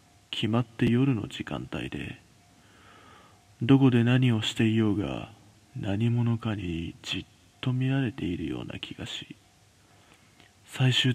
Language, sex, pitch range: Japanese, male, 105-130 Hz